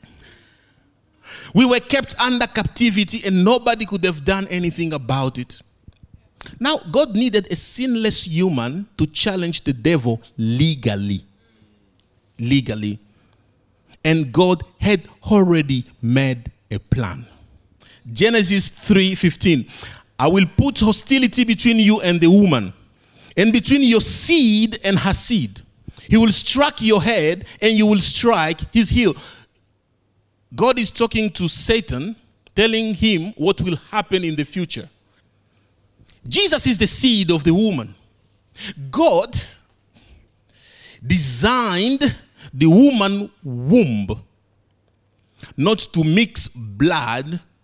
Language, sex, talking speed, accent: English, male, 115 wpm, Nigerian